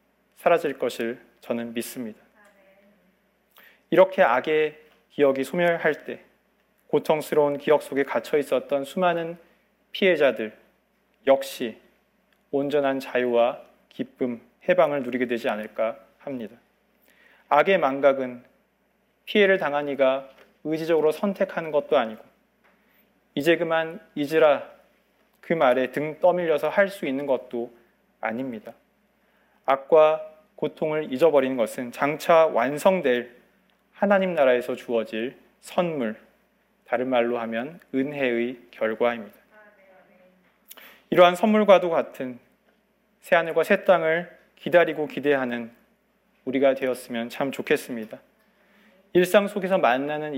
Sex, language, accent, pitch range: male, Korean, native, 130-185 Hz